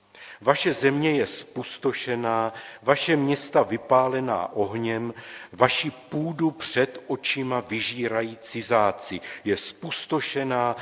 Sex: male